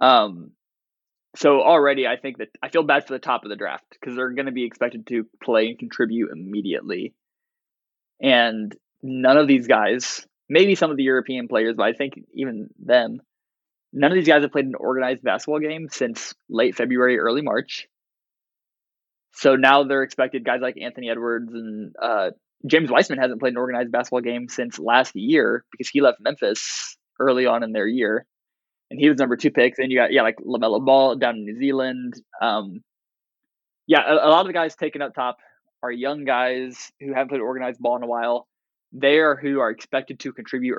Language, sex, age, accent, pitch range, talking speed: English, male, 20-39, American, 115-140 Hz, 195 wpm